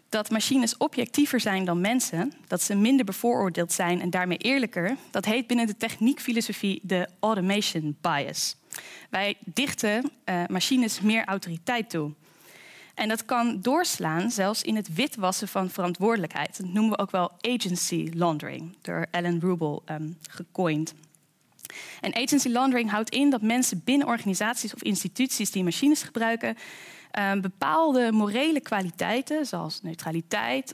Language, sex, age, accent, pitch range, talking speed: Dutch, female, 10-29, Dutch, 185-250 Hz, 135 wpm